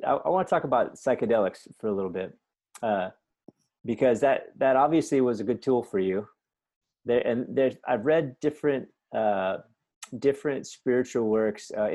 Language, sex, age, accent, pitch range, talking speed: English, male, 30-49, American, 105-130 Hz, 160 wpm